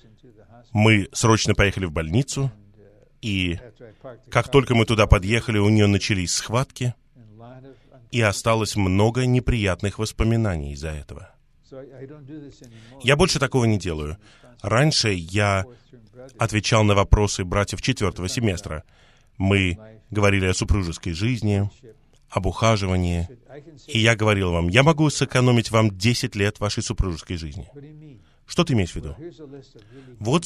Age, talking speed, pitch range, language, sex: 20-39, 120 wpm, 100-125 Hz, Russian, male